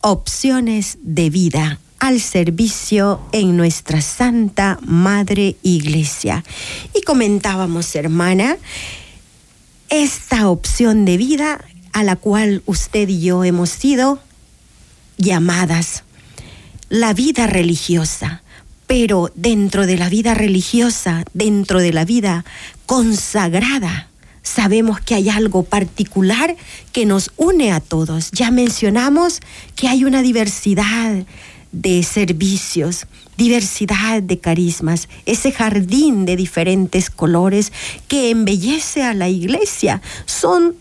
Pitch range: 180-250 Hz